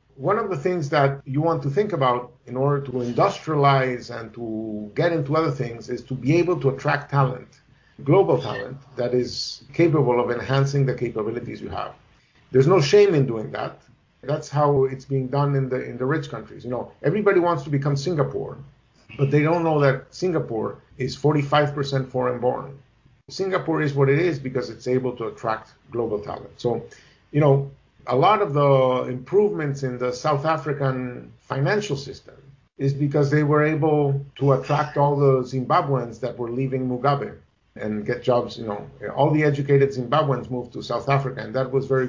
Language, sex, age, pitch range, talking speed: English, male, 50-69, 125-150 Hz, 185 wpm